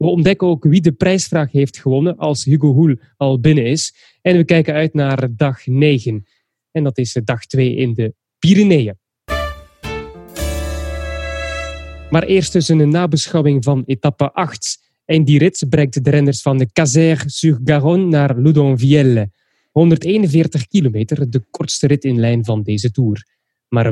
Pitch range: 125-160 Hz